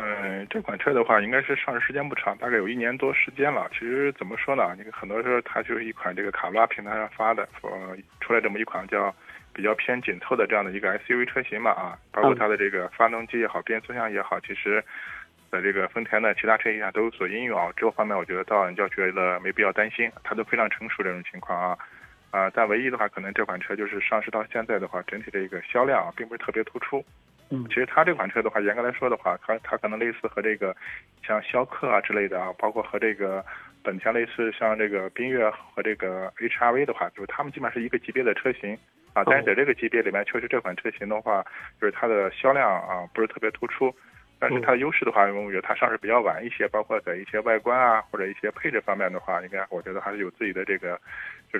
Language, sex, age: Chinese, male, 20-39